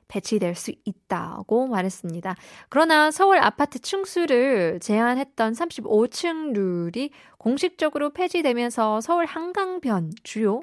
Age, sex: 20-39, female